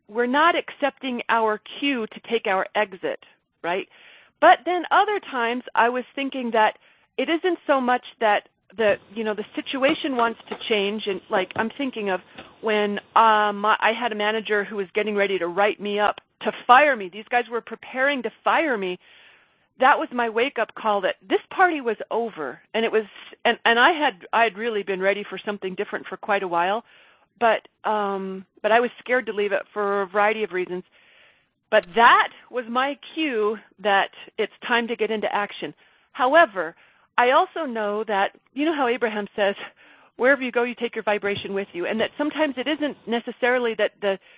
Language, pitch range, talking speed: English, 205-255 Hz, 195 wpm